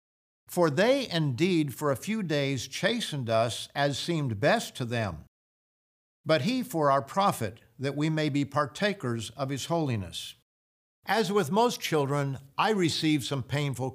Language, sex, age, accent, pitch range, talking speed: English, male, 60-79, American, 120-165 Hz, 150 wpm